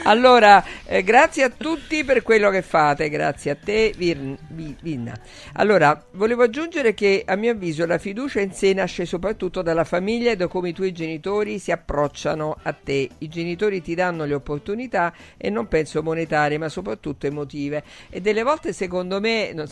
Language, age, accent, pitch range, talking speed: Italian, 50-69, native, 145-180 Hz, 175 wpm